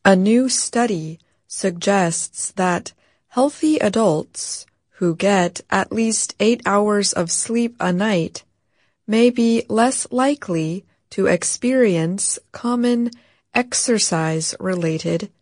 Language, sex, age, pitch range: Chinese, female, 30-49, 170-225 Hz